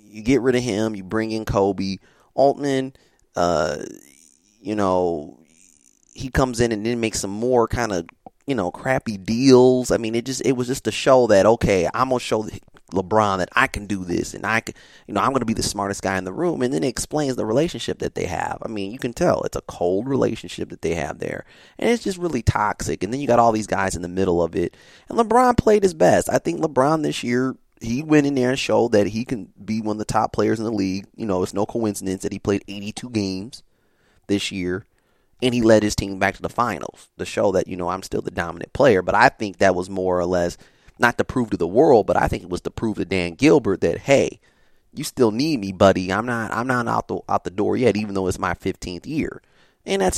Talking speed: 250 wpm